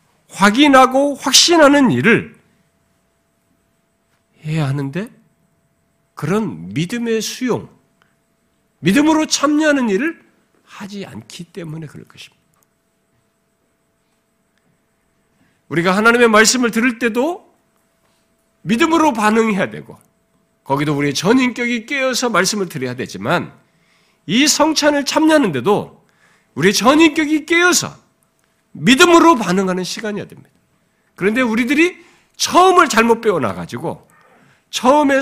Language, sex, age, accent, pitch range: Korean, male, 50-69, native, 185-275 Hz